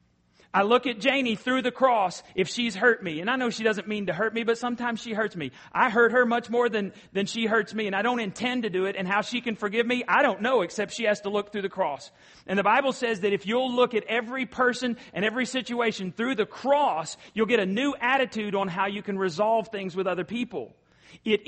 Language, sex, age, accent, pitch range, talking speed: English, male, 40-59, American, 175-225 Hz, 255 wpm